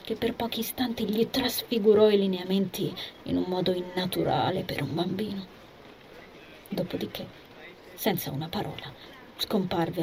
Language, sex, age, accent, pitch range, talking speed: Italian, female, 30-49, native, 175-215 Hz, 120 wpm